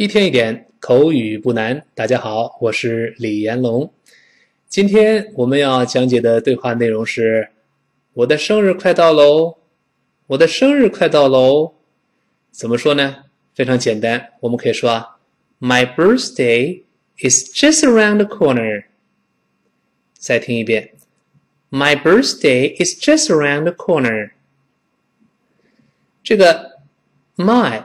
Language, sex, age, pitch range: Chinese, male, 20-39, 120-190 Hz